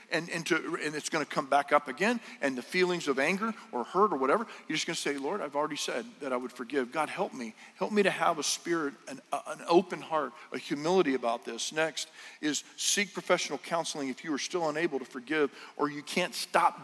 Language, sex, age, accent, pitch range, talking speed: English, male, 50-69, American, 140-190 Hz, 235 wpm